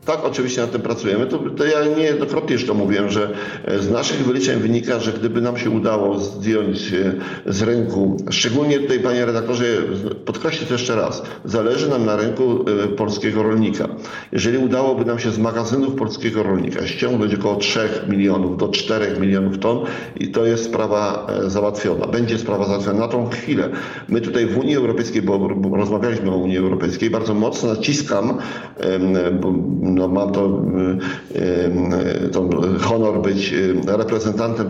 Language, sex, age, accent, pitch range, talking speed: Polish, male, 50-69, native, 100-115 Hz, 150 wpm